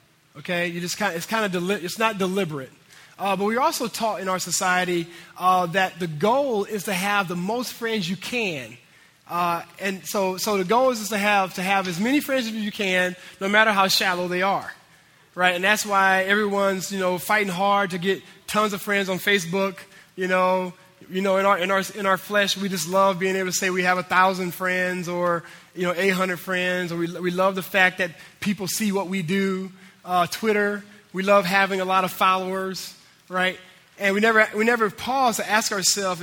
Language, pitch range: English, 180-210 Hz